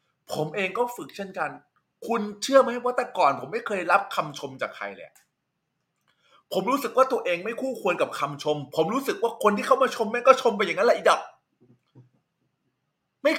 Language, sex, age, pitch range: Thai, male, 20-39, 170-250 Hz